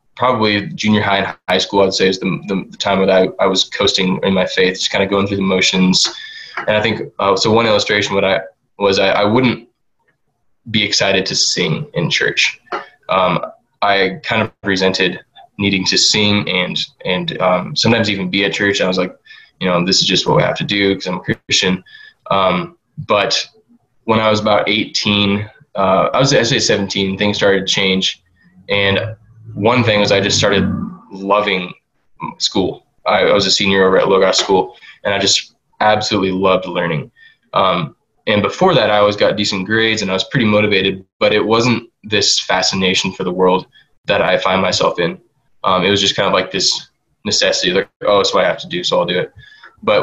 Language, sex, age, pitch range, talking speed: English, male, 20-39, 95-110 Hz, 205 wpm